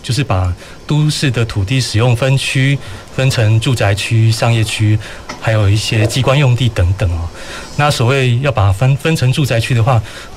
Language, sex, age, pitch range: Chinese, male, 30-49, 110-135 Hz